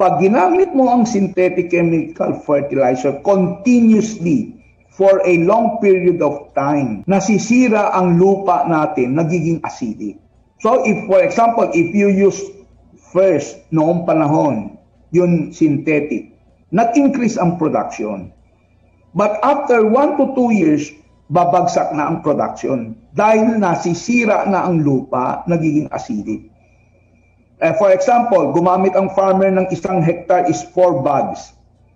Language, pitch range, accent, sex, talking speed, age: Filipino, 155-210 Hz, native, male, 120 wpm, 50-69